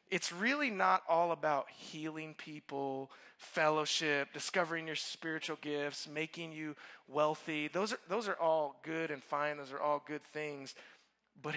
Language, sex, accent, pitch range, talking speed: English, male, American, 150-220 Hz, 150 wpm